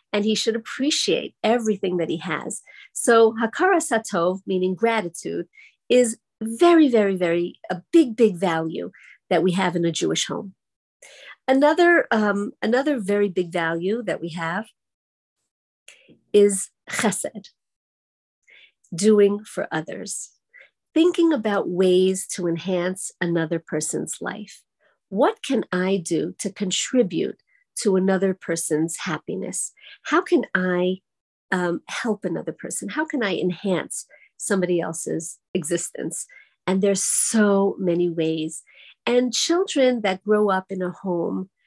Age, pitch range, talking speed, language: 50-69, 180-245 Hz, 125 wpm, English